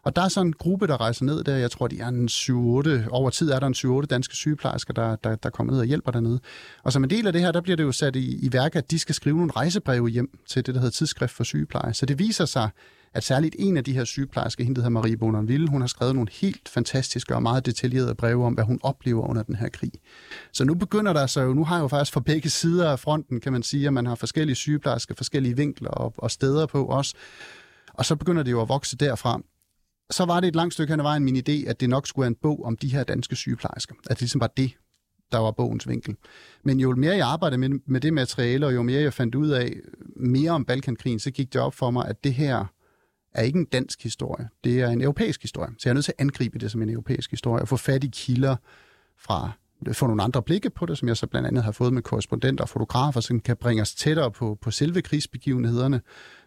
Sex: male